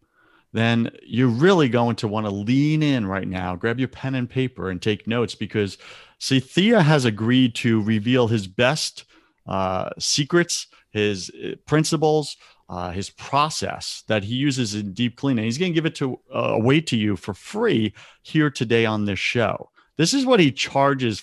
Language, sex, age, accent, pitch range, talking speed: English, male, 40-59, American, 105-140 Hz, 175 wpm